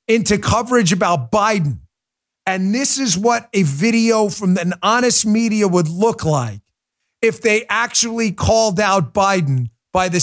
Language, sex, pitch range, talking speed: English, male, 130-180 Hz, 145 wpm